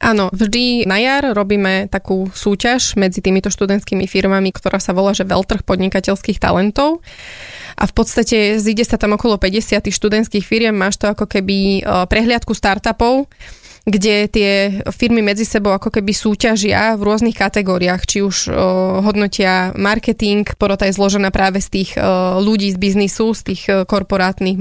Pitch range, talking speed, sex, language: 190-215 Hz, 150 wpm, female, Slovak